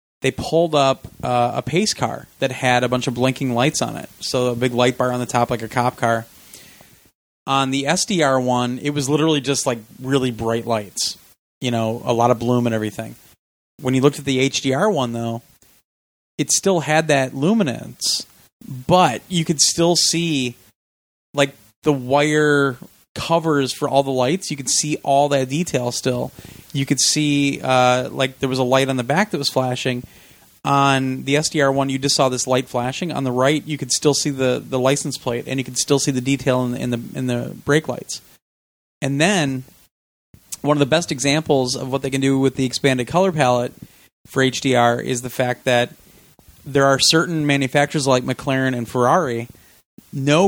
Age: 30-49